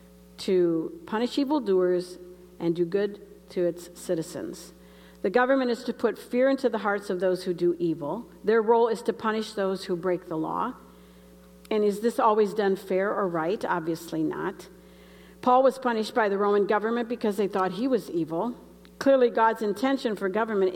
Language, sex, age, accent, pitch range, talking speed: English, female, 50-69, American, 170-220 Hz, 175 wpm